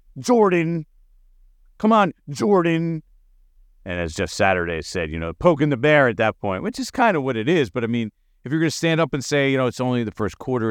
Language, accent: English, American